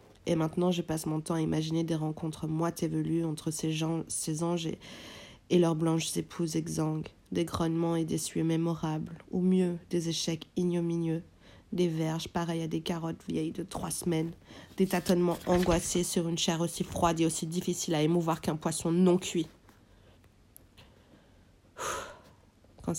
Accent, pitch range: French, 150-175 Hz